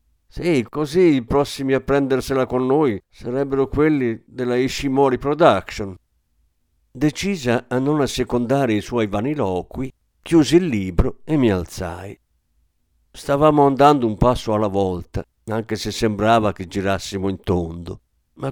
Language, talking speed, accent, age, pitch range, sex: Italian, 130 wpm, native, 50-69, 95-130 Hz, male